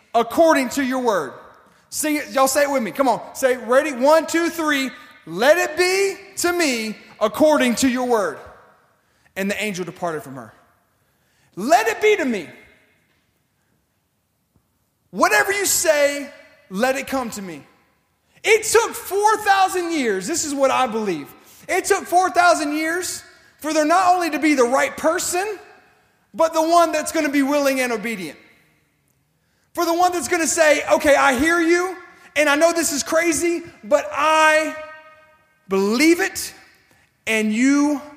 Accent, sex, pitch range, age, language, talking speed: American, male, 250-335 Hz, 30-49, English, 155 wpm